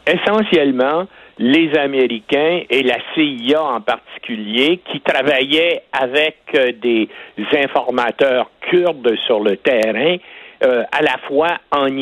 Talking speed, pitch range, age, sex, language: 110 wpm, 145-215 Hz, 60-79, male, French